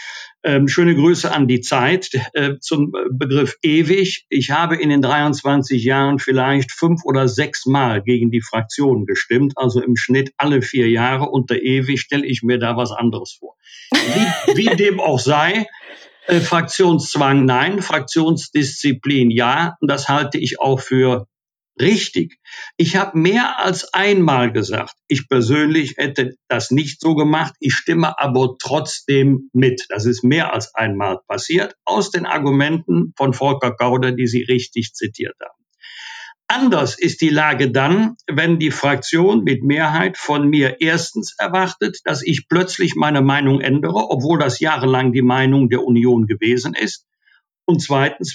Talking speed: 155 wpm